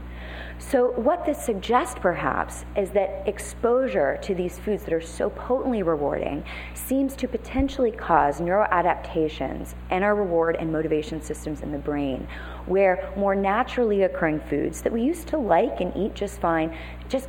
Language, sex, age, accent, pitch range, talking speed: English, female, 30-49, American, 150-200 Hz, 155 wpm